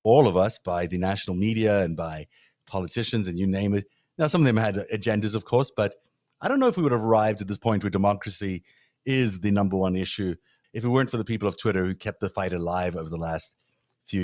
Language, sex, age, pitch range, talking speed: English, male, 30-49, 95-125 Hz, 245 wpm